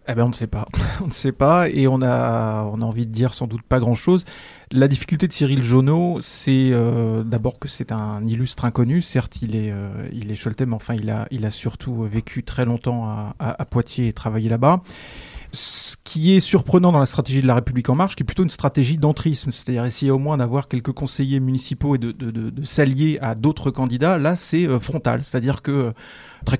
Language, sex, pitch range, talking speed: French, male, 120-150 Hz, 230 wpm